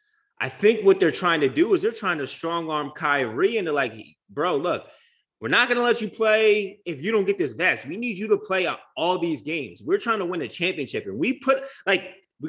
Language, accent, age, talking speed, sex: English, American, 30-49, 245 wpm, male